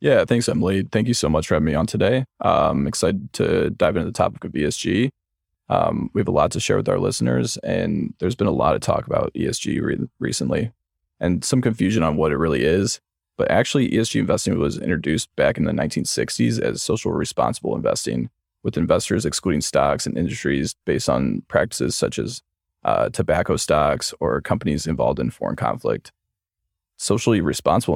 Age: 20-39